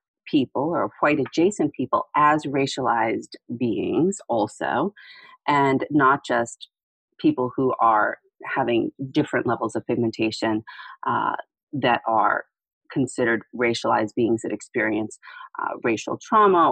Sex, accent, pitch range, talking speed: female, American, 125-170 Hz, 110 wpm